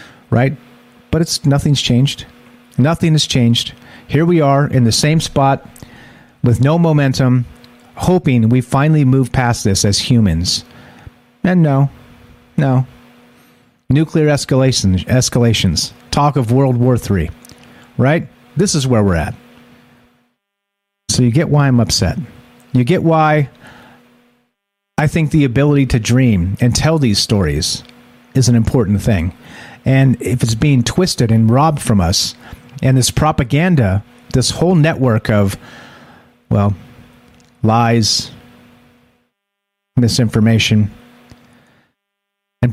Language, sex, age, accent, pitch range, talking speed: English, male, 40-59, American, 120-145 Hz, 120 wpm